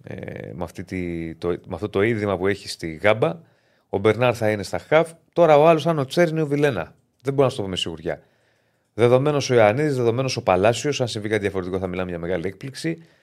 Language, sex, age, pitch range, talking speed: Greek, male, 30-49, 100-135 Hz, 225 wpm